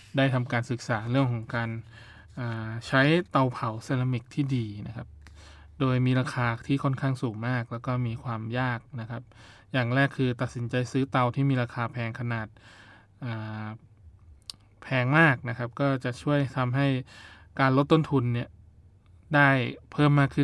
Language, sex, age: Thai, male, 20-39